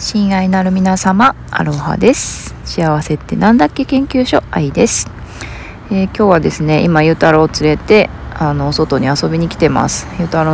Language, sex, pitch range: Japanese, female, 145-185 Hz